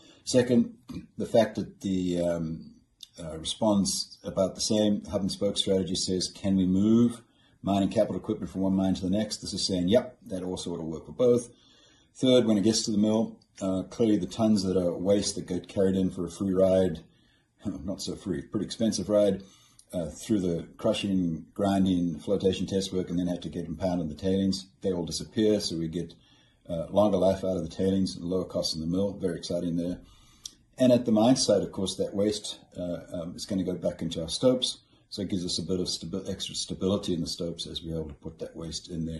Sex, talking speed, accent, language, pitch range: male, 220 wpm, Australian, English, 85-100 Hz